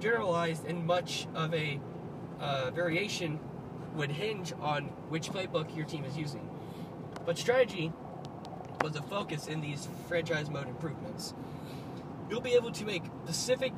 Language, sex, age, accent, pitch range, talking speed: English, male, 20-39, American, 145-175 Hz, 140 wpm